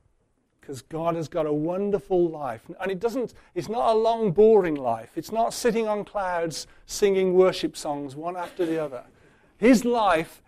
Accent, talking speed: British, 170 wpm